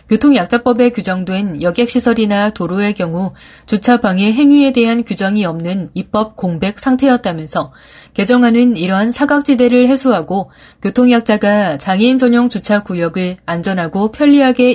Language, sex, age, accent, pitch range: Korean, female, 30-49, native, 180-235 Hz